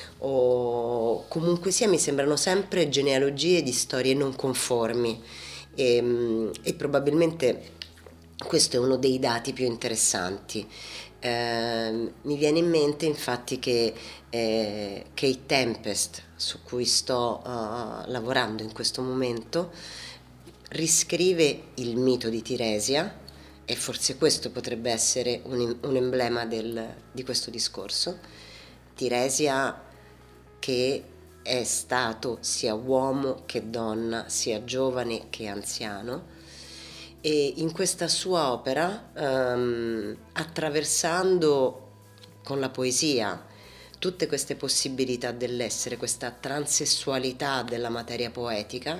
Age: 30-49